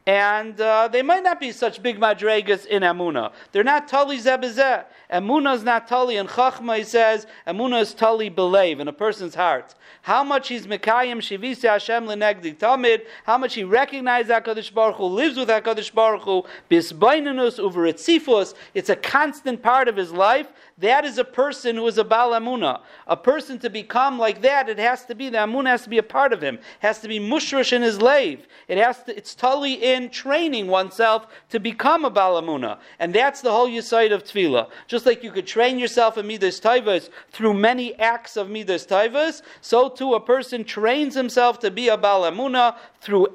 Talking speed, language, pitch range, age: 190 wpm, English, 210-260 Hz, 50-69